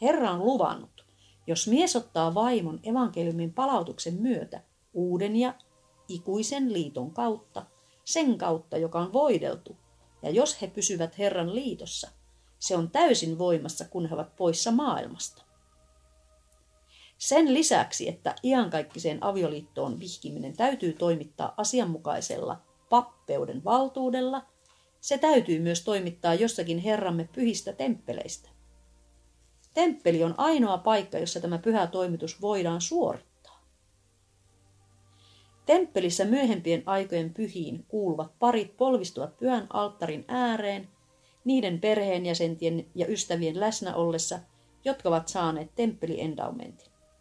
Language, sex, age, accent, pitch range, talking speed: Finnish, female, 40-59, native, 160-235 Hz, 105 wpm